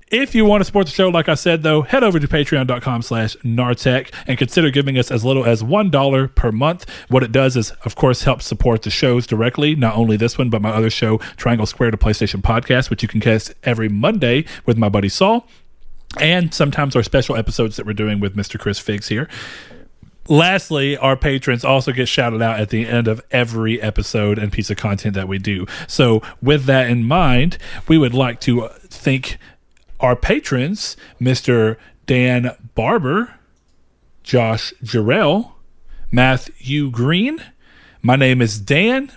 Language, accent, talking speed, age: English, American, 180 wpm, 40-59